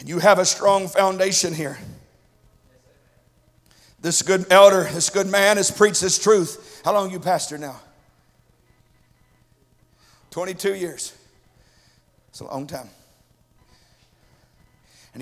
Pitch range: 180-280 Hz